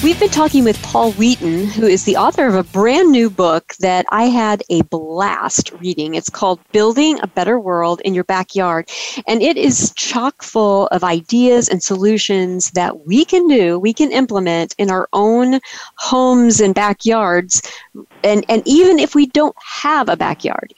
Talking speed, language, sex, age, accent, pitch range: 175 wpm, English, female, 40-59, American, 185-245 Hz